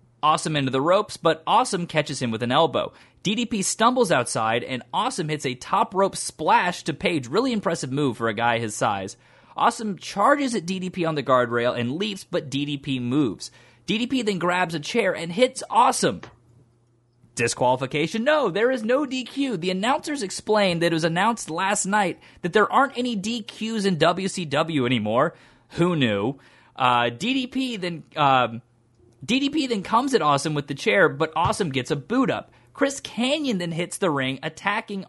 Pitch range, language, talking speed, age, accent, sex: 130-210 Hz, English, 175 wpm, 30-49, American, male